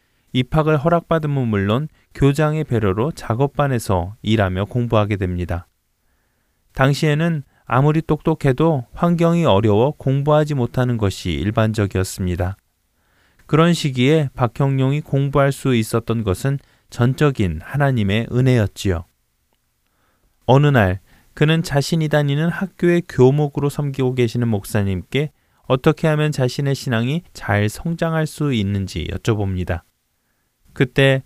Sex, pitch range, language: male, 105-145 Hz, Korean